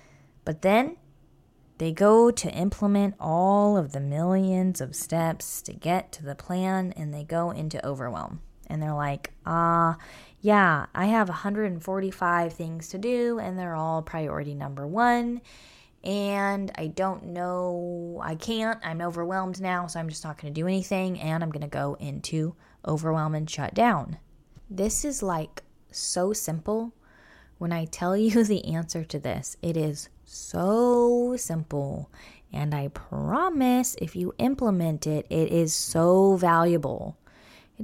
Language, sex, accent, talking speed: English, female, American, 150 wpm